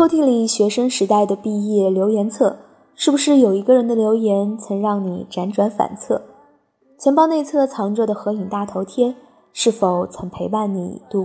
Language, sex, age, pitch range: Chinese, female, 20-39, 195-255 Hz